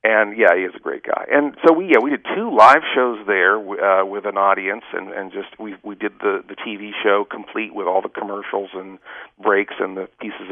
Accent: American